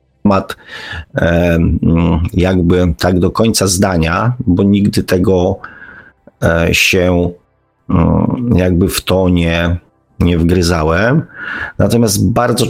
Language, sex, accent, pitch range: Polish, male, native, 85-110 Hz